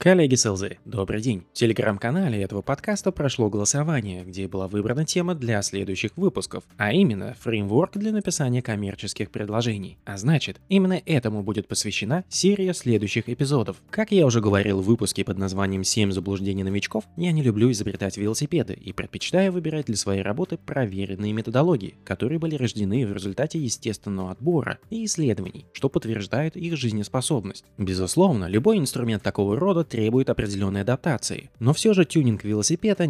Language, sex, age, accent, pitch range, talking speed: Russian, male, 20-39, native, 100-150 Hz, 150 wpm